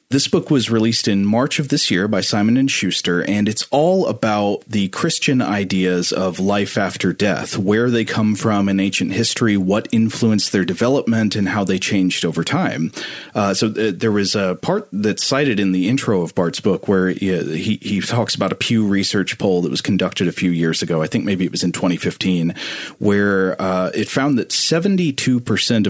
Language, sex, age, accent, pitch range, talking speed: English, male, 30-49, American, 95-115 Hz, 195 wpm